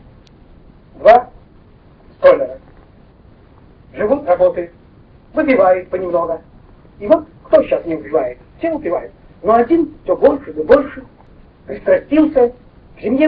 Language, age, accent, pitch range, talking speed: Russian, 50-69, native, 205-335 Hz, 95 wpm